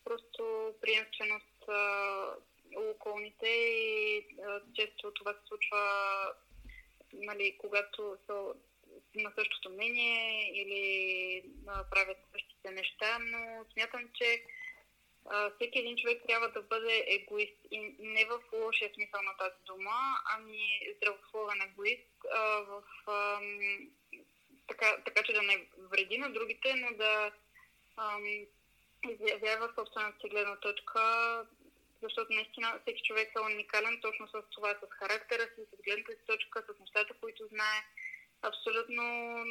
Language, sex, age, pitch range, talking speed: Bulgarian, female, 20-39, 205-235 Hz, 125 wpm